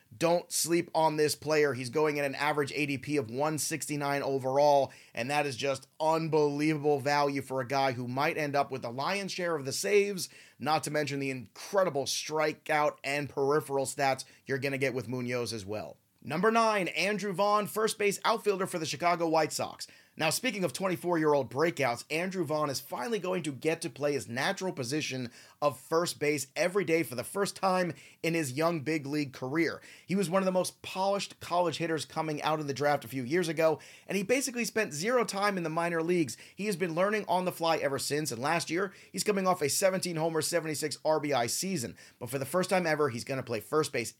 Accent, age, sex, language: American, 30-49, male, English